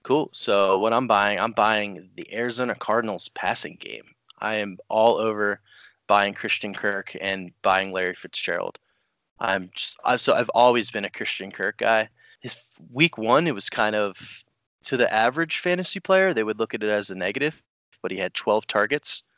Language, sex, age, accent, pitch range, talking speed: English, male, 20-39, American, 95-115 Hz, 185 wpm